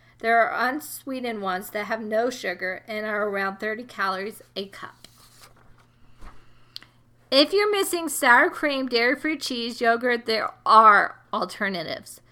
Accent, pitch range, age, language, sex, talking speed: American, 195-260 Hz, 40-59, English, female, 125 wpm